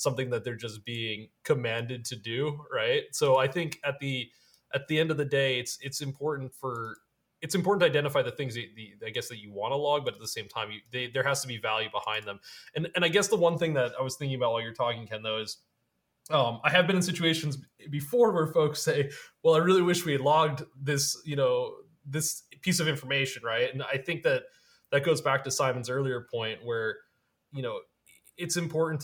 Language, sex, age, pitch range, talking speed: English, male, 20-39, 115-155 Hz, 230 wpm